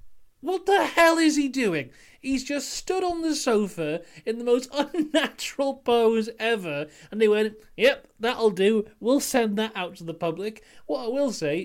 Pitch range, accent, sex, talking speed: 155-215 Hz, British, male, 180 wpm